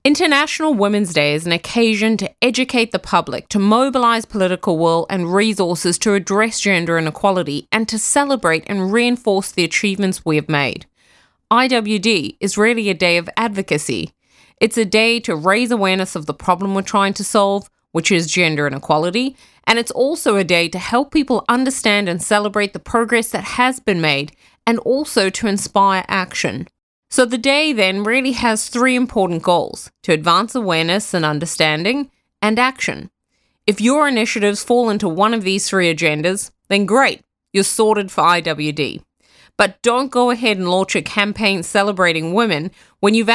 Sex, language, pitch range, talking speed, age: female, English, 180-235 Hz, 165 wpm, 30-49